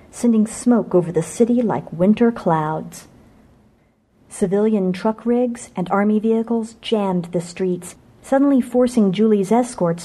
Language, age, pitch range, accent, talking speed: English, 50-69, 175-230 Hz, American, 125 wpm